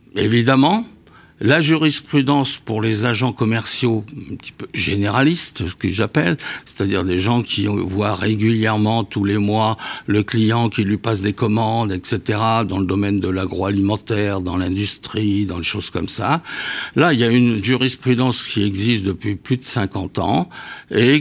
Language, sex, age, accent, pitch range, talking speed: French, male, 60-79, French, 100-130 Hz, 160 wpm